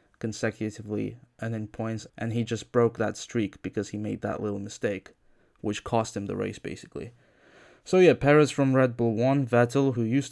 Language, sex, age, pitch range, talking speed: English, male, 20-39, 105-120 Hz, 185 wpm